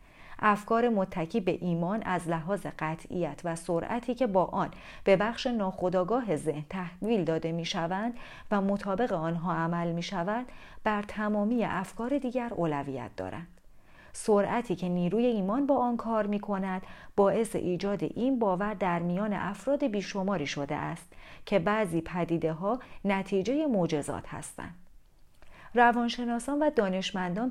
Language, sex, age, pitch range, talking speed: Persian, female, 40-59, 175-230 Hz, 135 wpm